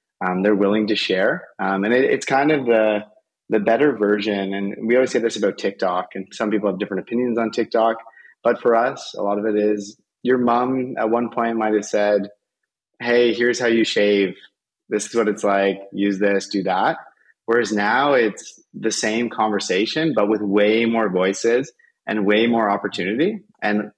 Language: English